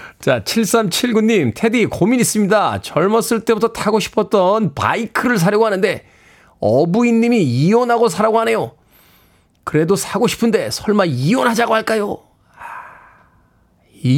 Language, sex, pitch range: Korean, male, 130-220 Hz